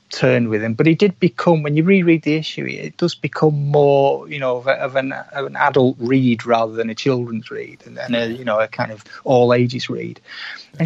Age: 30-49